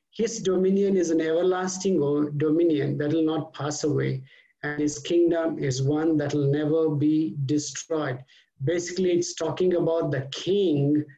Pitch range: 145-180 Hz